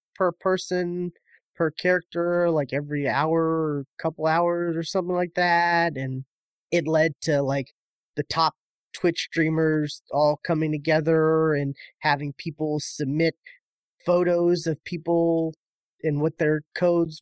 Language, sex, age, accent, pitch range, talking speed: English, male, 20-39, American, 145-165 Hz, 125 wpm